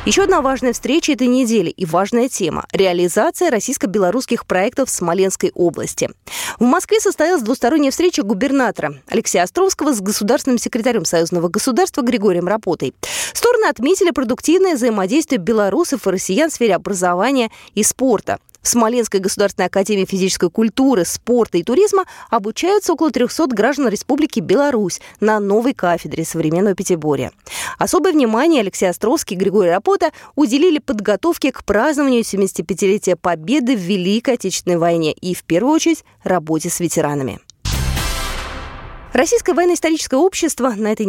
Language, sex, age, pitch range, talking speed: Russian, female, 20-39, 190-290 Hz, 135 wpm